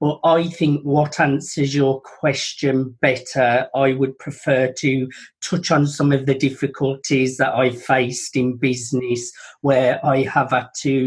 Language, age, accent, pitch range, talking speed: English, 40-59, British, 130-145 Hz, 150 wpm